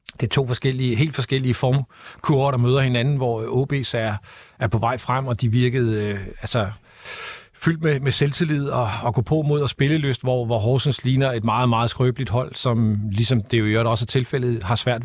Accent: native